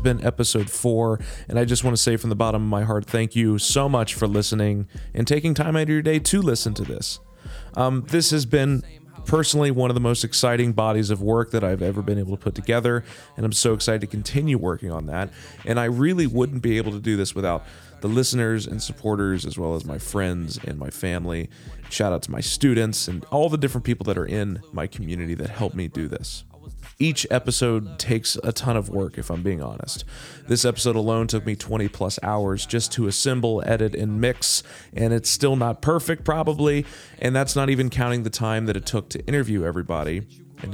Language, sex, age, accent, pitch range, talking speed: English, male, 30-49, American, 105-135 Hz, 220 wpm